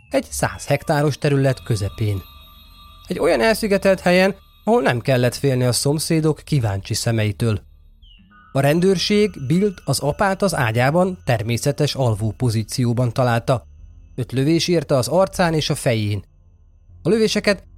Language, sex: Hungarian, male